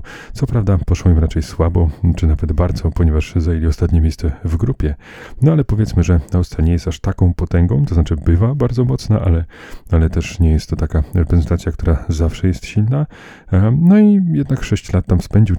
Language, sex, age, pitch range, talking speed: Polish, male, 30-49, 80-90 Hz, 190 wpm